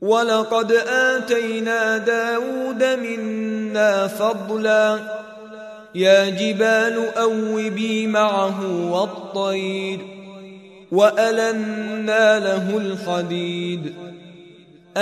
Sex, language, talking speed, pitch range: male, Arabic, 50 wpm, 200-230 Hz